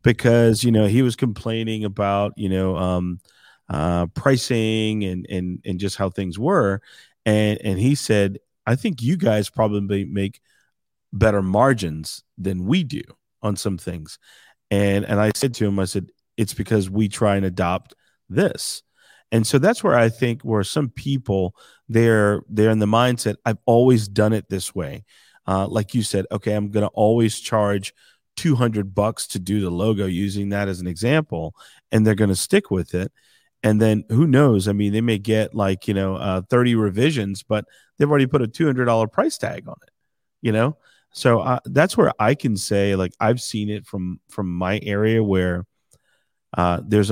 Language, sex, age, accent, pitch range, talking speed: English, male, 30-49, American, 95-115 Hz, 185 wpm